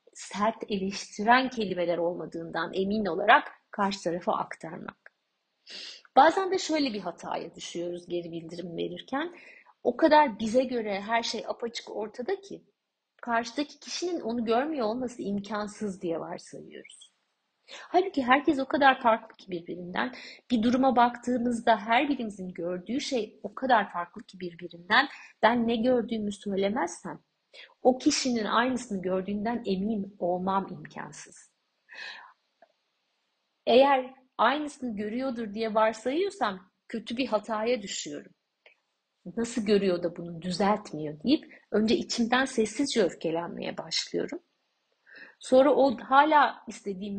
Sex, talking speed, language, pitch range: female, 115 wpm, Turkish, 195-255 Hz